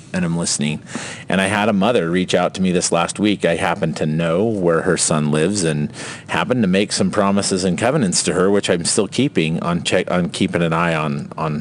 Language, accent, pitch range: English, American, 80-105 Hz